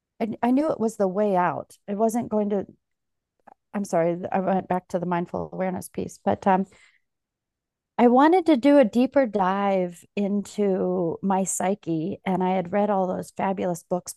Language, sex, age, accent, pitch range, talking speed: English, female, 40-59, American, 185-215 Hz, 175 wpm